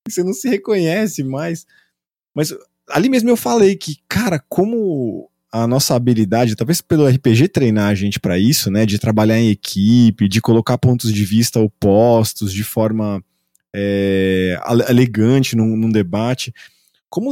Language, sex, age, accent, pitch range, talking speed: Portuguese, male, 20-39, Brazilian, 105-165 Hz, 145 wpm